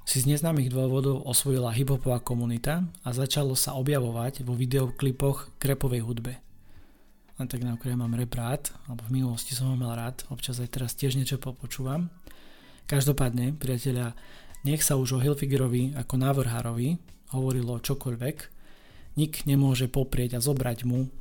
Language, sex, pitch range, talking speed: Slovak, male, 125-140 Hz, 140 wpm